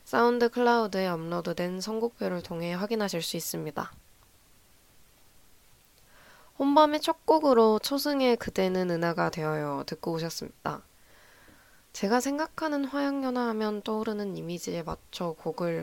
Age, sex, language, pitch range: 20-39, female, Korean, 165-225 Hz